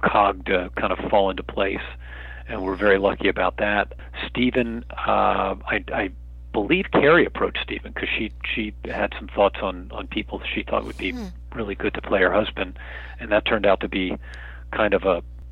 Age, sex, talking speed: 40-59, male, 195 wpm